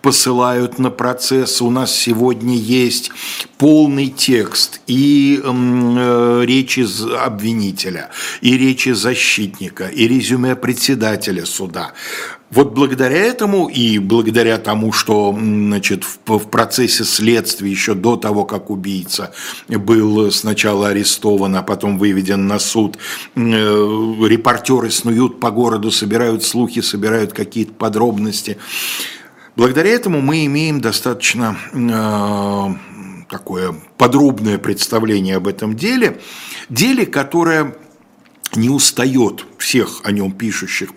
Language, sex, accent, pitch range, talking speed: Russian, male, native, 105-135 Hz, 110 wpm